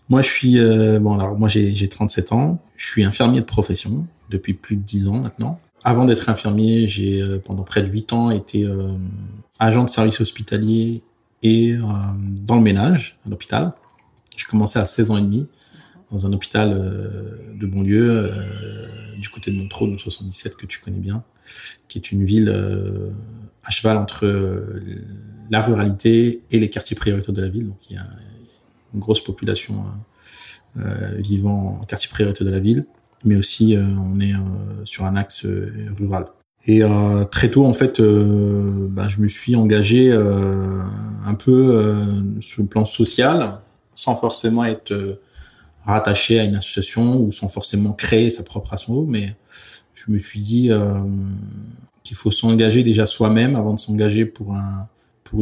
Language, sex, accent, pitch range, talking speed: French, male, French, 100-115 Hz, 180 wpm